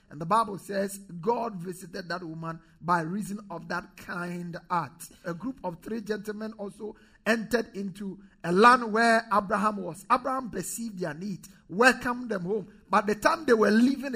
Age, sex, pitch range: 50-69, male, 180-225 Hz